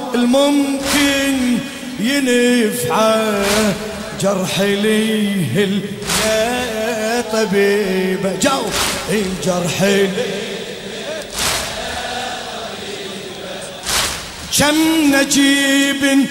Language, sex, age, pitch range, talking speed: Arabic, male, 30-49, 205-275 Hz, 50 wpm